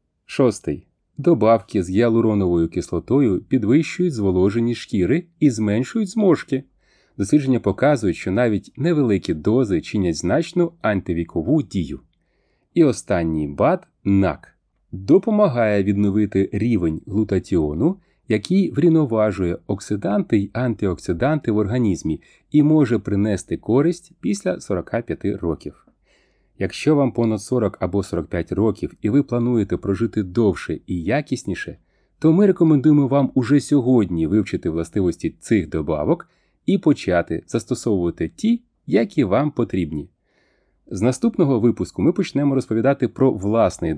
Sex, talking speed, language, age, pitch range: male, 110 wpm, Ukrainian, 30-49, 95-145 Hz